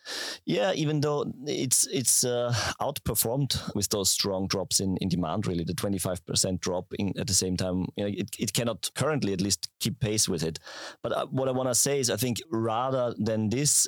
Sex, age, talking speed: male, 30-49, 210 wpm